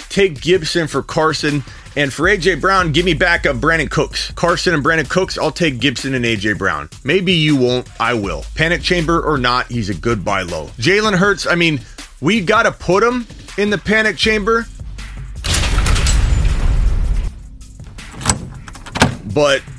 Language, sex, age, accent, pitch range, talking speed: English, male, 30-49, American, 115-185 Hz, 160 wpm